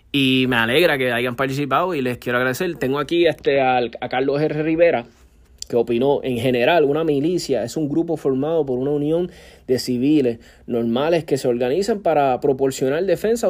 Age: 30-49